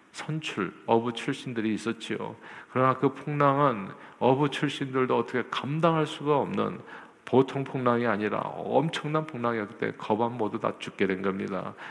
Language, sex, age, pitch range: Korean, male, 50-69, 110-150 Hz